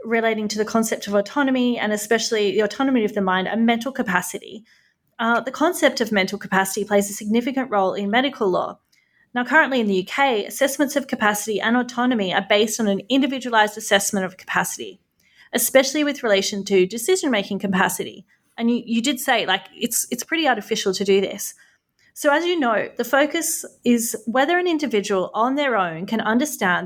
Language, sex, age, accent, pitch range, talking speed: English, female, 30-49, Australian, 200-255 Hz, 180 wpm